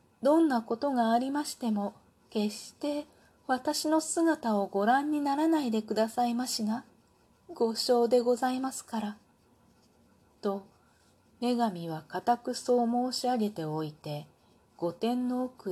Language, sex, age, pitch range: Japanese, female, 40-59, 170-230 Hz